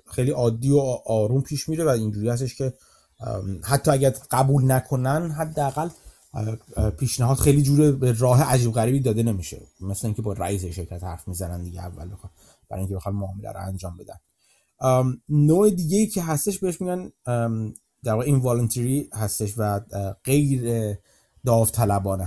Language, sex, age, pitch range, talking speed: Persian, male, 30-49, 105-135 Hz, 145 wpm